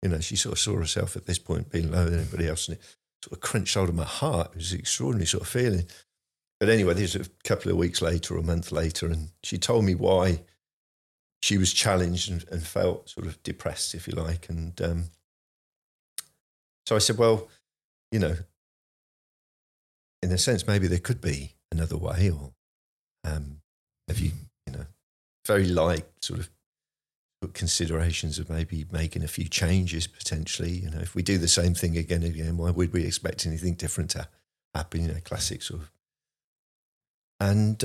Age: 50-69